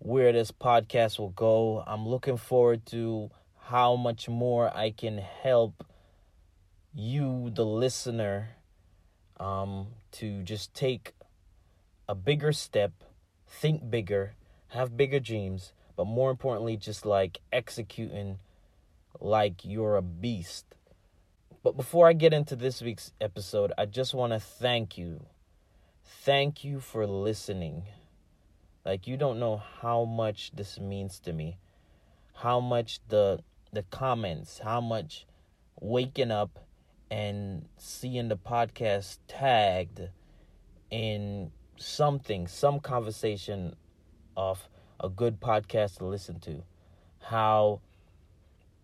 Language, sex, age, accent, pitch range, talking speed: English, male, 30-49, American, 90-115 Hz, 115 wpm